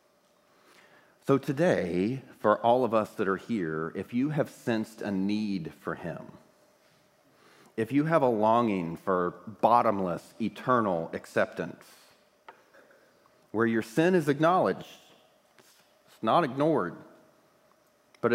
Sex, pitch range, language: male, 95-125 Hz, English